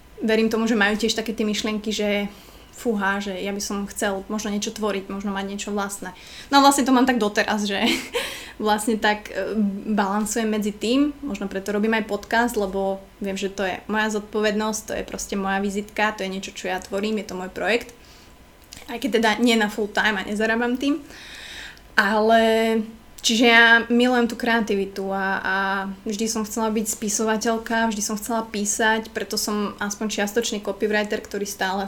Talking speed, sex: 180 wpm, female